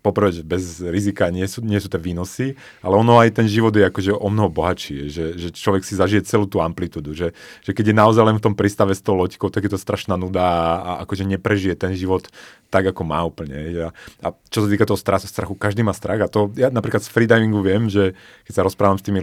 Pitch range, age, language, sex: 90-110 Hz, 30-49, Slovak, male